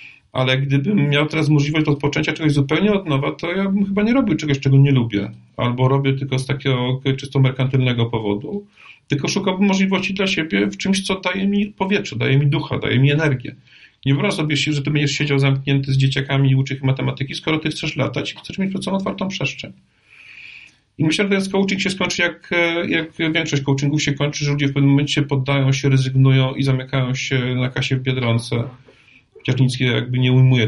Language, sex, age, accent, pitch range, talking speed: Polish, male, 40-59, native, 130-165 Hz, 200 wpm